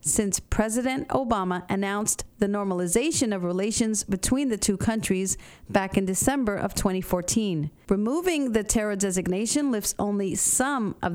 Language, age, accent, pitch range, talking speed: English, 50-69, American, 190-235 Hz, 135 wpm